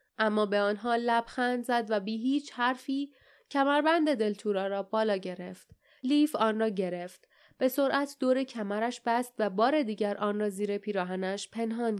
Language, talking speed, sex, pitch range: Persian, 155 wpm, female, 210-275 Hz